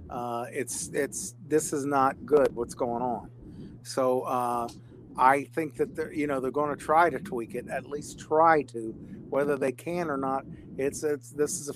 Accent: American